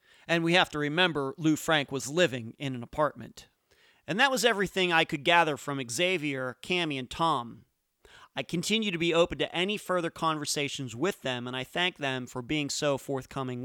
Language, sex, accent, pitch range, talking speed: English, male, American, 145-190 Hz, 190 wpm